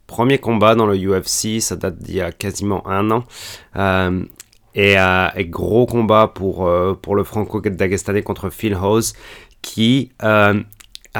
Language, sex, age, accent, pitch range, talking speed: French, male, 30-49, French, 95-115 Hz, 155 wpm